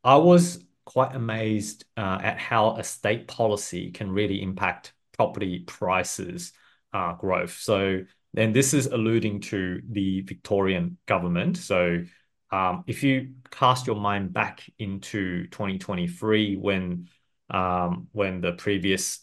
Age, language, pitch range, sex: 30-49, English, 95-120 Hz, male